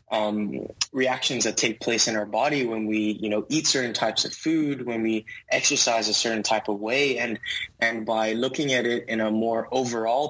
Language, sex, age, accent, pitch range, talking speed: English, male, 20-39, American, 110-130 Hz, 205 wpm